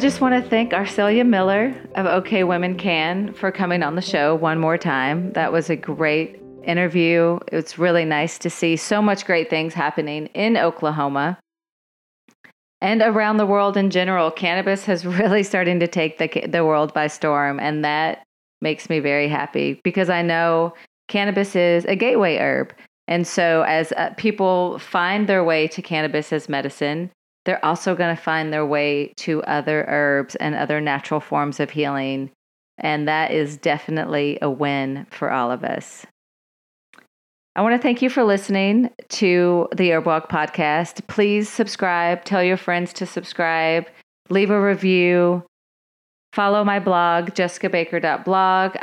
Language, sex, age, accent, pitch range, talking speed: English, female, 30-49, American, 155-195 Hz, 160 wpm